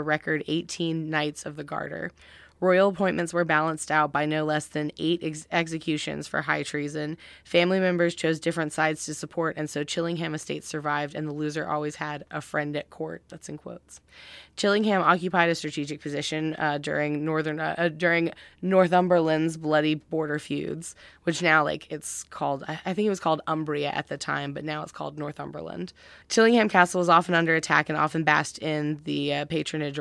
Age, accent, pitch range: 20-39, American, 150-165 Hz